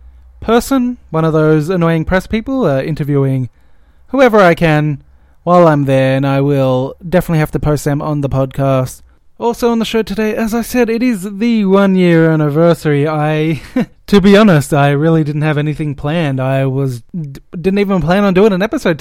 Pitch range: 135-180 Hz